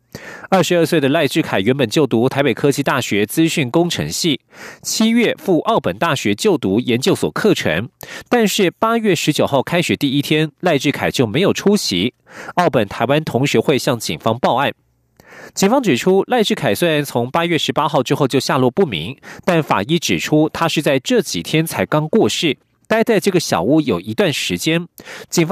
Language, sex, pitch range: German, male, 140-195 Hz